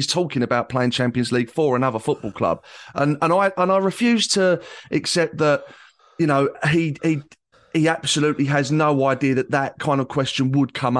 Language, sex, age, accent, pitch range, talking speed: English, male, 30-49, British, 130-170 Hz, 190 wpm